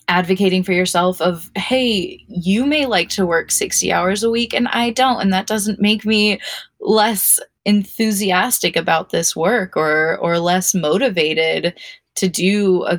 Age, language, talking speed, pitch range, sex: 20-39, English, 155 wpm, 165-200 Hz, female